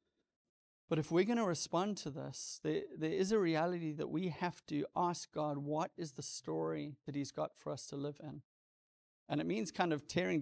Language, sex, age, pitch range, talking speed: English, male, 30-49, 145-165 Hz, 215 wpm